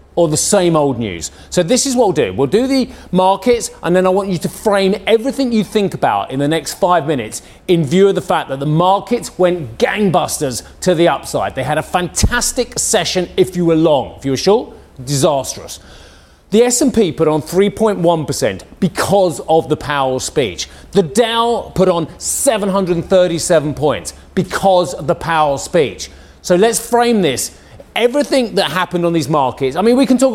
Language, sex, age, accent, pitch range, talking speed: English, male, 30-49, British, 155-205 Hz, 185 wpm